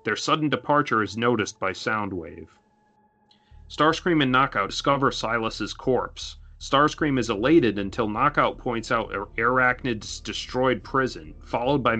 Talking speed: 125 wpm